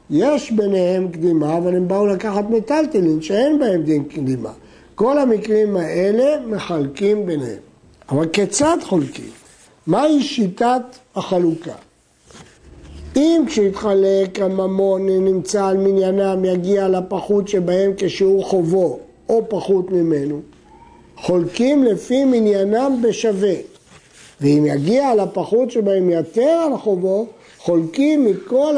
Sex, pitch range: male, 185-235 Hz